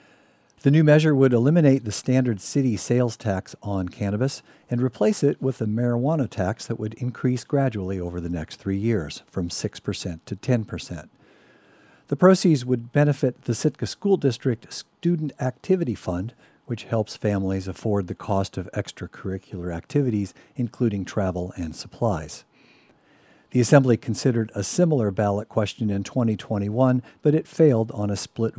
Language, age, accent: English, 50-69, American